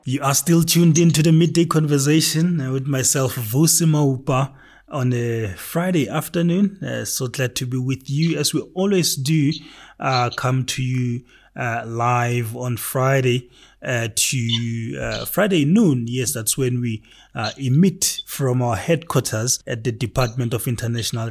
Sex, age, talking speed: male, 30-49, 150 wpm